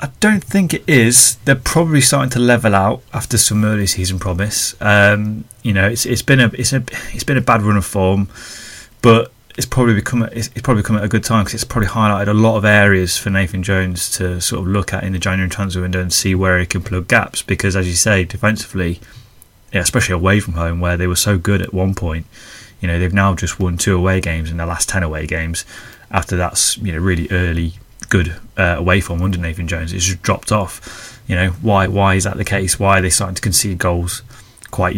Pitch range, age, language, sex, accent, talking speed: 90-115 Hz, 20-39, English, male, British, 235 wpm